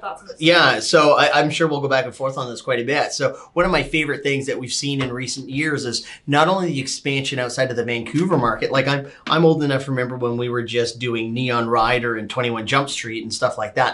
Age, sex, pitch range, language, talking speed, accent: 30-49, male, 120-145 Hz, English, 260 wpm, American